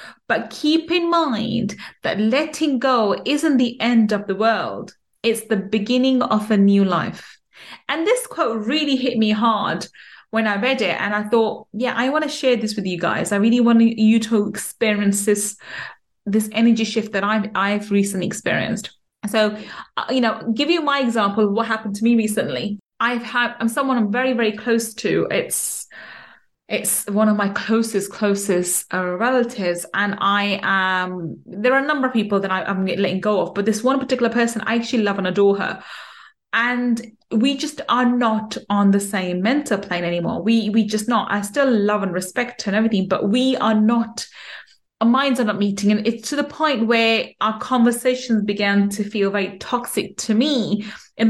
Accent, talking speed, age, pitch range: British, 190 wpm, 30-49, 205-240 Hz